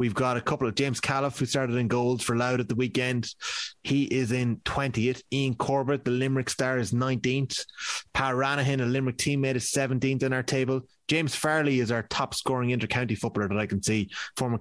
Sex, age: male, 30-49